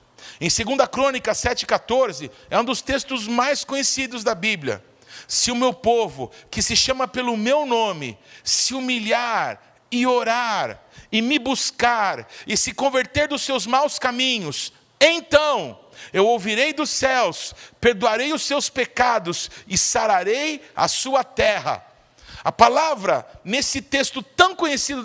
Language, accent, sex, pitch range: Portuguese, Brazilian, male, 230-290 Hz